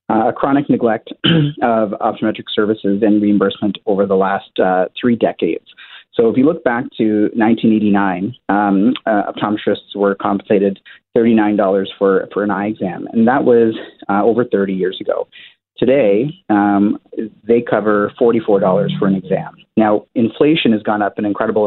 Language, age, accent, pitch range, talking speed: English, 30-49, American, 100-115 Hz, 155 wpm